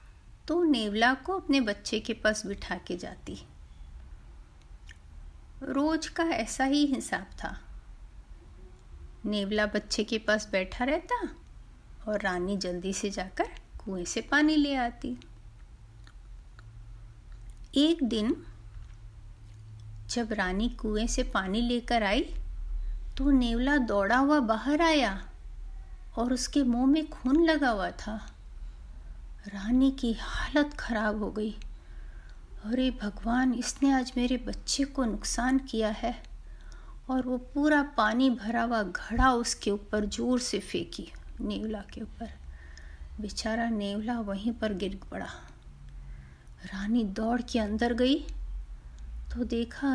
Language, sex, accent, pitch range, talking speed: Hindi, female, native, 190-265 Hz, 120 wpm